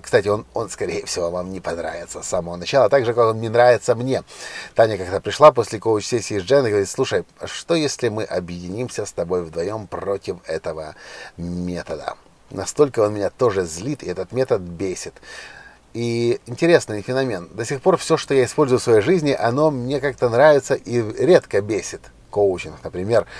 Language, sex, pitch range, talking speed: Russian, male, 100-145 Hz, 175 wpm